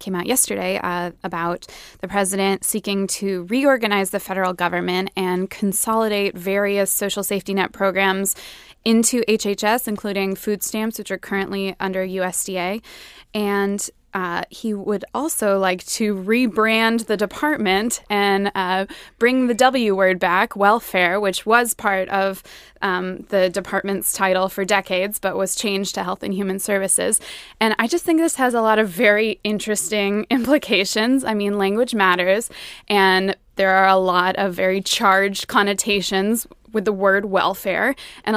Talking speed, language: 150 wpm, English